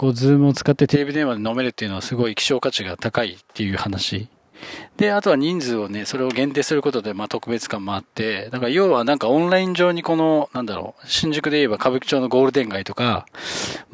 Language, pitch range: Japanese, 110-150 Hz